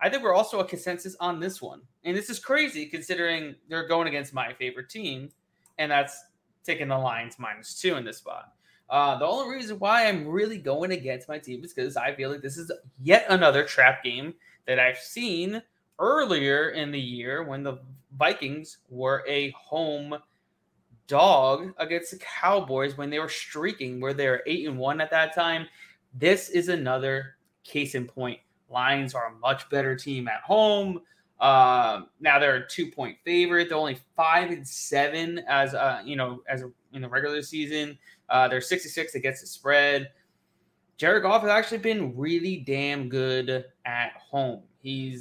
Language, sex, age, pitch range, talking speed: English, male, 20-39, 130-175 Hz, 175 wpm